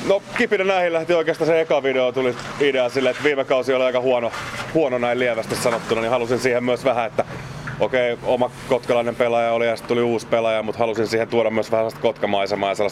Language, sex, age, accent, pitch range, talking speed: Finnish, male, 30-49, native, 105-125 Hz, 220 wpm